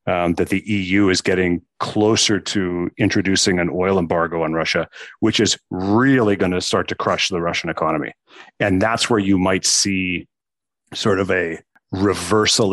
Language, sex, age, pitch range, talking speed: English, male, 40-59, 90-105 Hz, 165 wpm